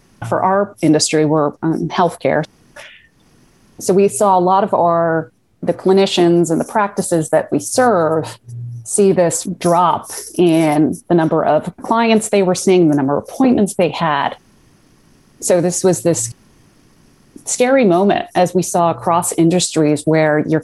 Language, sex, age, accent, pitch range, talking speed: English, female, 30-49, American, 160-195 Hz, 150 wpm